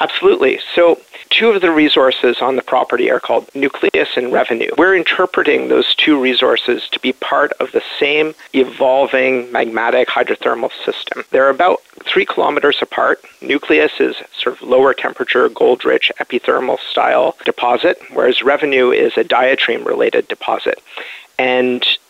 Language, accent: English, American